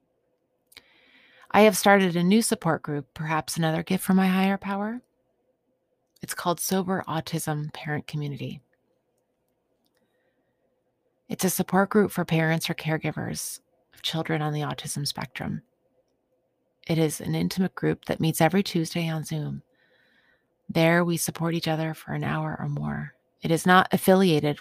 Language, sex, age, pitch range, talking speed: English, female, 30-49, 150-190 Hz, 145 wpm